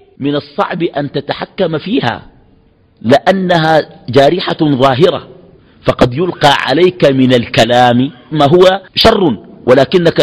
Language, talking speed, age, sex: Arabic, 100 wpm, 50-69, male